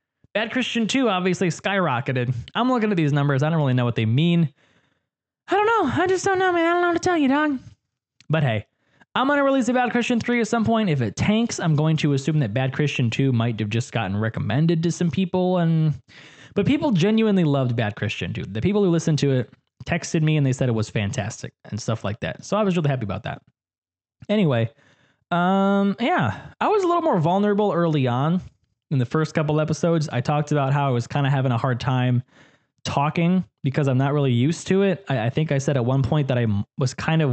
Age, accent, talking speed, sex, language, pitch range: 20-39, American, 235 wpm, male, English, 130-180 Hz